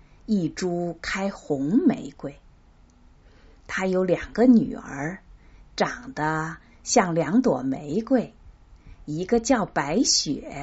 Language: Chinese